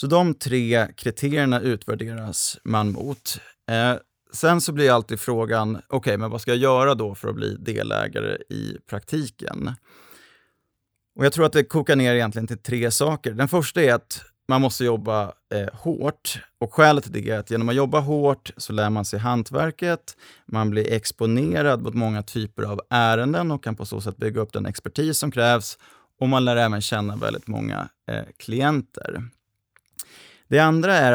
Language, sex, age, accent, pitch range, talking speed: Swedish, male, 30-49, native, 110-135 Hz, 175 wpm